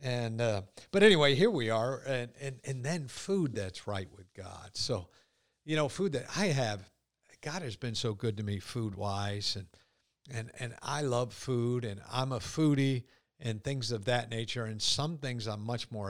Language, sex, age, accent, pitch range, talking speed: English, male, 50-69, American, 110-135 Hz, 200 wpm